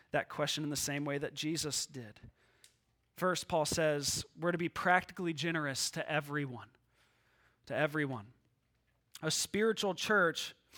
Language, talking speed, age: English, 135 wpm, 20-39